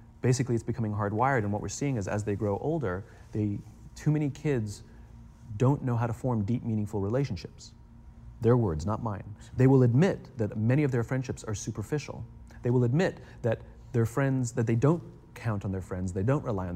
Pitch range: 115-150 Hz